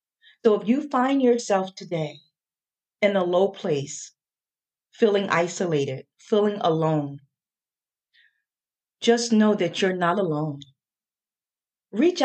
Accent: American